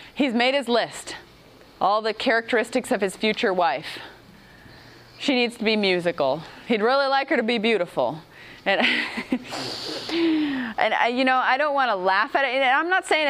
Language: English